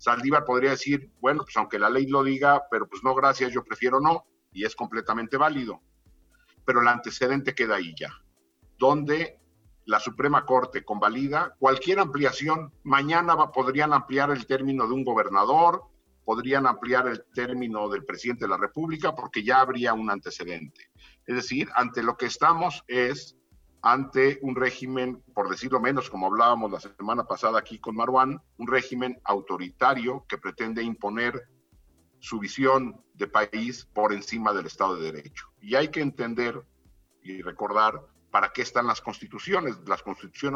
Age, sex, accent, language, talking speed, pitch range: 50-69, male, Mexican, English, 155 wpm, 105-135 Hz